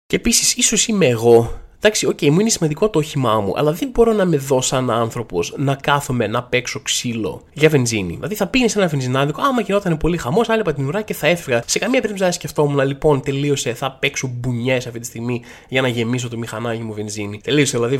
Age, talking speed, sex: 20-39, 225 wpm, male